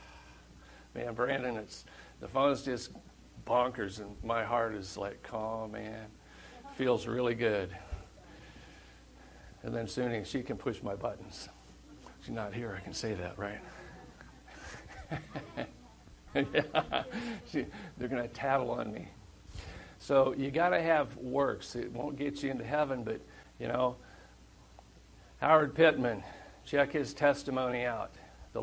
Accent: American